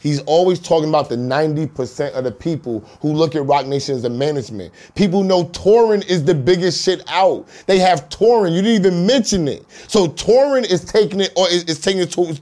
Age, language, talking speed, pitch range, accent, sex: 30-49, English, 215 wpm, 175-225 Hz, American, male